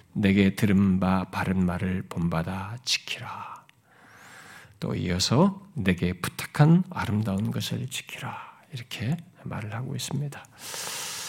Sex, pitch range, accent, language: male, 100-165 Hz, native, Korean